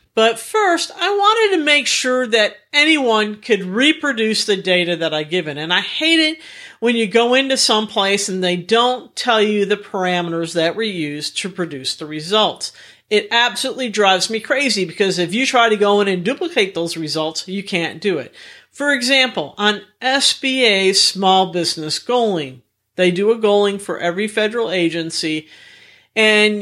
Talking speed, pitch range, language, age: 170 wpm, 180-245 Hz, English, 50-69